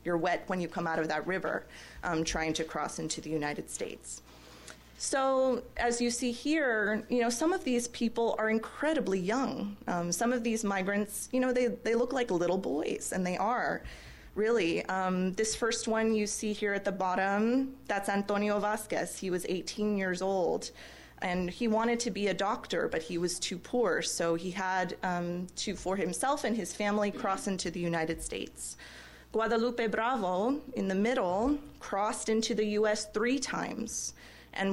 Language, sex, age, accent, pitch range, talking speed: English, female, 30-49, American, 180-230 Hz, 180 wpm